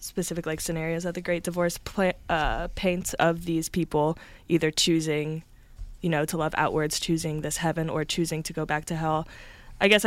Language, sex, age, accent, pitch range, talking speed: English, female, 20-39, American, 155-180 Hz, 185 wpm